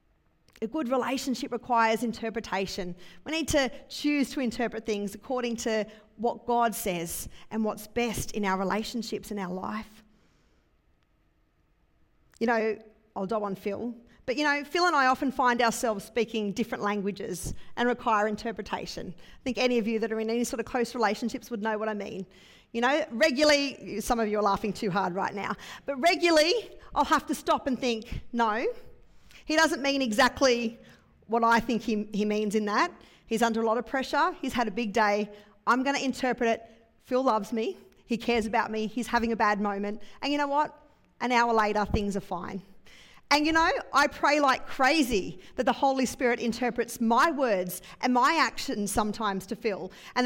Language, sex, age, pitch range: English, female, 40-59, 215-260 Hz